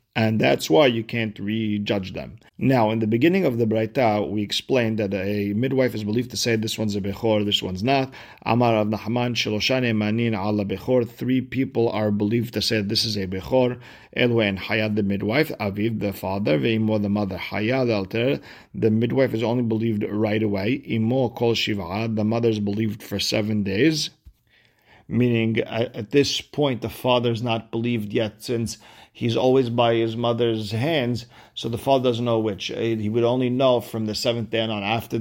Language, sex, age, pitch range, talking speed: English, male, 50-69, 105-120 Hz, 170 wpm